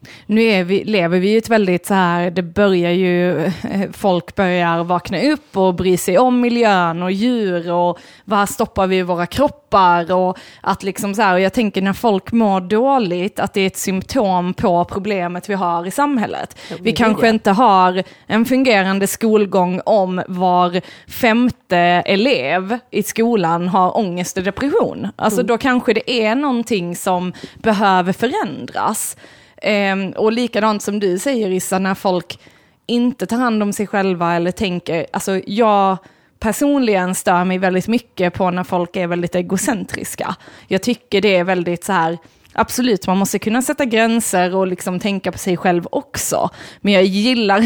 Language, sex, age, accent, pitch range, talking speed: Swedish, female, 20-39, native, 180-220 Hz, 165 wpm